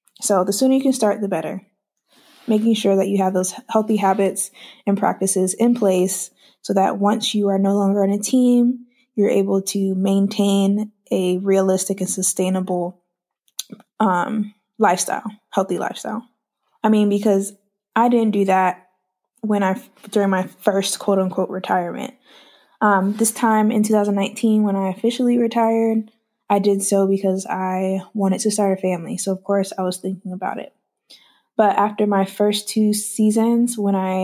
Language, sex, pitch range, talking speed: English, female, 190-215 Hz, 160 wpm